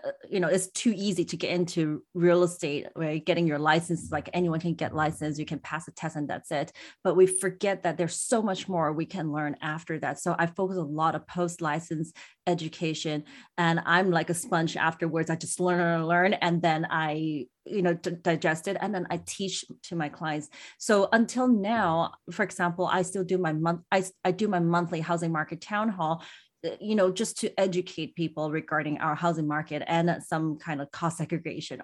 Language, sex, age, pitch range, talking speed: English, female, 30-49, 155-185 Hz, 205 wpm